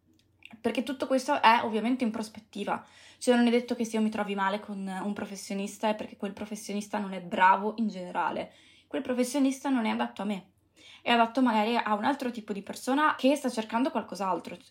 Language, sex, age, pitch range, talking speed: Italian, female, 20-39, 205-240 Hz, 200 wpm